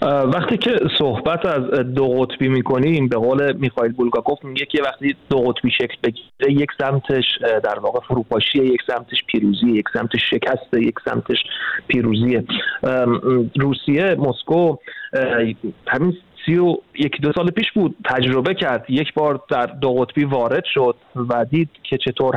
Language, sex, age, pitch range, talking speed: Persian, male, 30-49, 125-155 Hz, 145 wpm